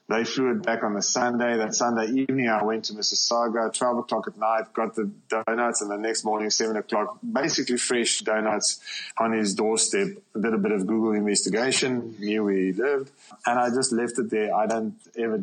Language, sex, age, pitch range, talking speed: English, male, 20-39, 105-130 Hz, 200 wpm